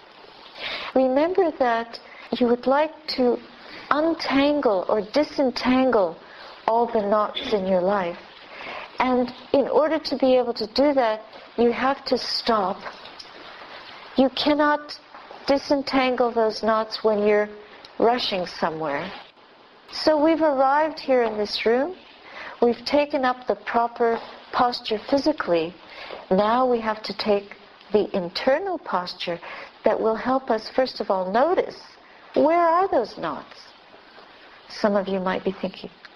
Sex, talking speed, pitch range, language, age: female, 130 wpm, 205-265 Hz, English, 50-69